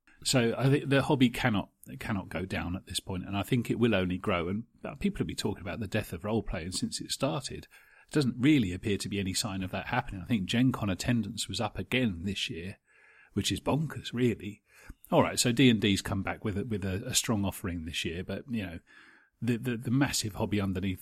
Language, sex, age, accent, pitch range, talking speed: English, male, 40-59, British, 95-120 Hz, 240 wpm